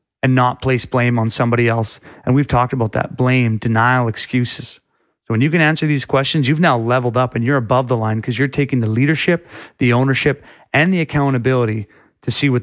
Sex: male